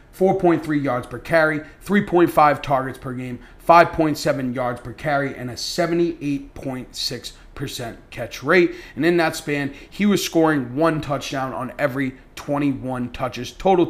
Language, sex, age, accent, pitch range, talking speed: English, male, 30-49, American, 130-160 Hz, 130 wpm